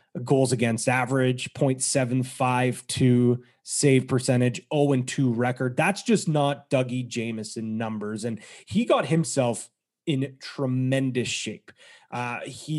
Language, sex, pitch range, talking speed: English, male, 125-150 Hz, 115 wpm